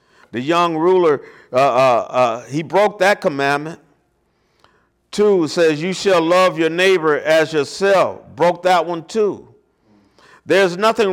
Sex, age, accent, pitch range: male, 50-69, American, 150-195 Hz